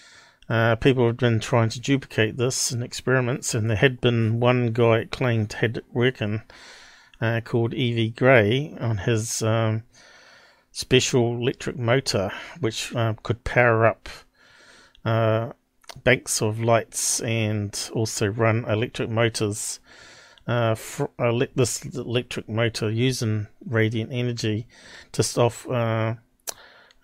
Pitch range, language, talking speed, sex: 110-125 Hz, English, 125 wpm, male